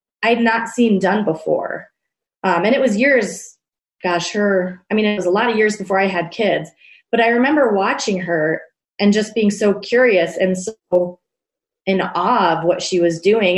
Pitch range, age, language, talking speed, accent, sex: 180-235 Hz, 20-39, English, 195 wpm, American, female